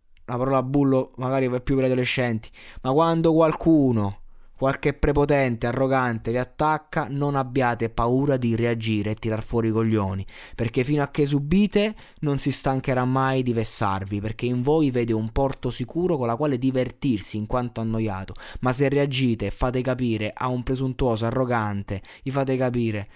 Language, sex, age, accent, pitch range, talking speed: Italian, male, 20-39, native, 110-135 Hz, 170 wpm